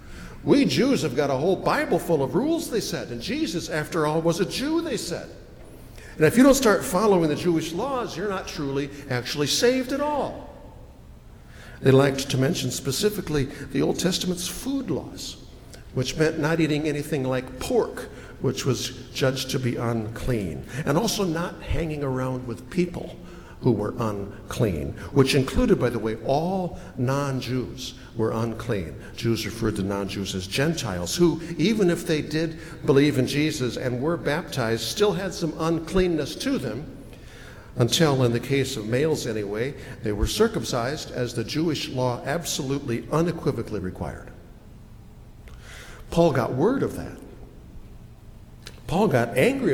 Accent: American